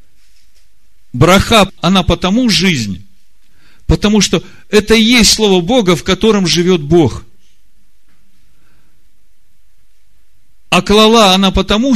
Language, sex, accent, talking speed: Russian, male, native, 95 wpm